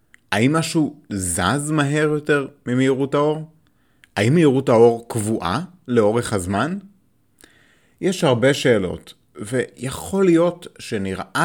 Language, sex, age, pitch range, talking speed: Hebrew, male, 30-49, 105-145 Hz, 100 wpm